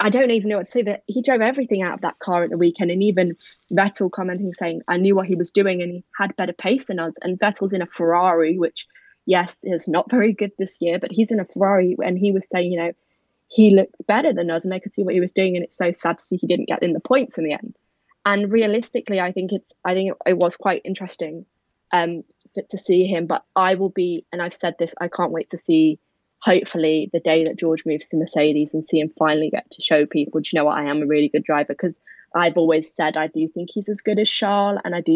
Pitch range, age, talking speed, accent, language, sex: 165-200 Hz, 20-39, 265 wpm, British, English, female